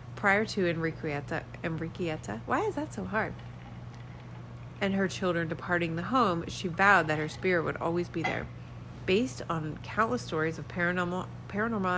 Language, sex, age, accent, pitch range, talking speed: English, female, 30-49, American, 145-180 Hz, 155 wpm